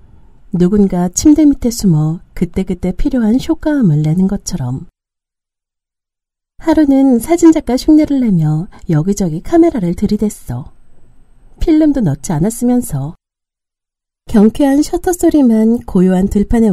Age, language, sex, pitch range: 40-59, Korean, female, 180-260 Hz